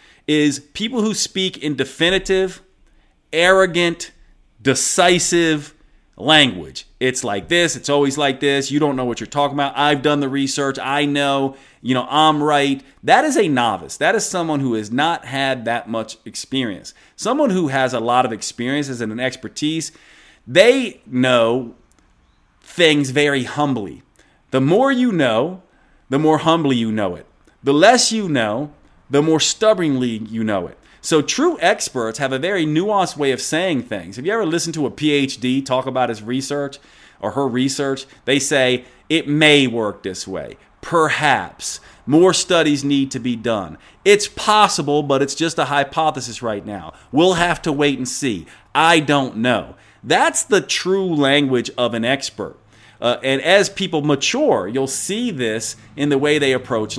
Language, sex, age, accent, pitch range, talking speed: English, male, 30-49, American, 125-160 Hz, 165 wpm